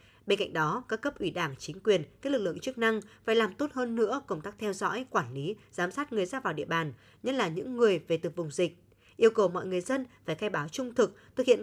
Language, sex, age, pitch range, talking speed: Vietnamese, female, 20-39, 165-255 Hz, 270 wpm